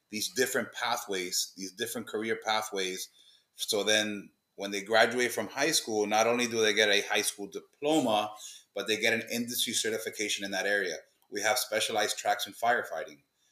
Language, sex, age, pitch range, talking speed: English, male, 30-49, 100-135 Hz, 175 wpm